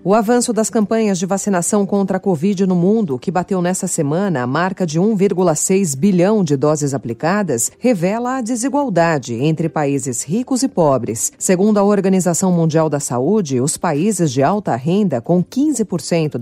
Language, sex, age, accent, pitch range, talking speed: Portuguese, female, 40-59, Brazilian, 155-205 Hz, 160 wpm